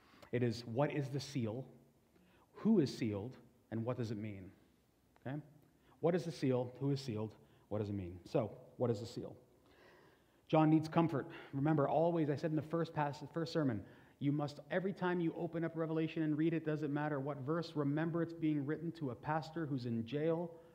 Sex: male